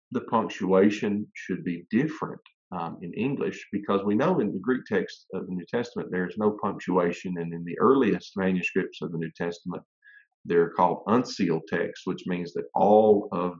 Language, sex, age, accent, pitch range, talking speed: English, male, 50-69, American, 90-125 Hz, 180 wpm